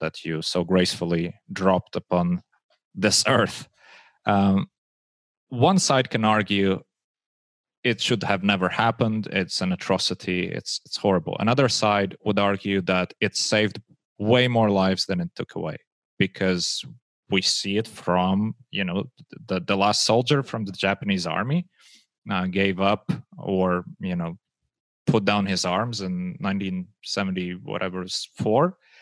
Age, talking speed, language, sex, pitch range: 30-49, 145 wpm, English, male, 90-115 Hz